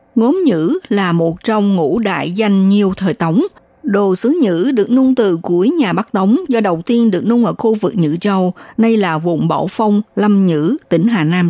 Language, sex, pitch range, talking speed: Vietnamese, female, 185-250 Hz, 215 wpm